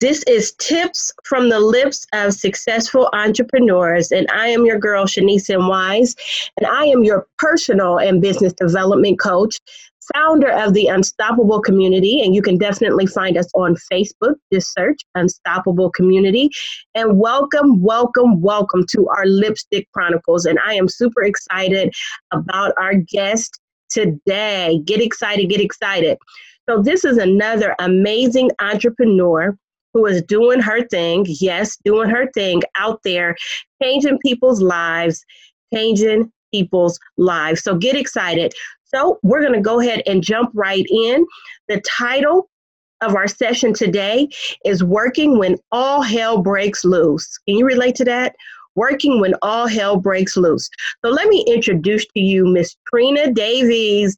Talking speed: 145 wpm